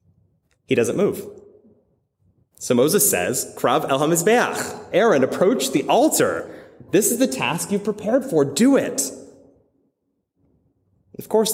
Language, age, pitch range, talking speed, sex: English, 20-39, 115-160 Hz, 125 wpm, male